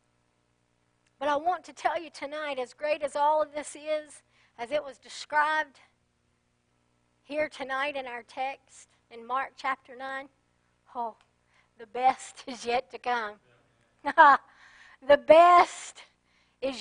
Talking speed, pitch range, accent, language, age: 130 wpm, 265-375 Hz, American, English, 60-79